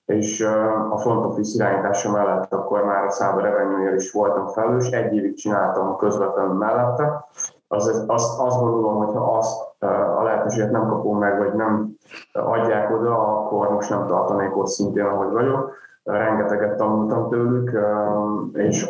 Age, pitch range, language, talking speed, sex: 30-49, 105-115 Hz, Hungarian, 150 wpm, male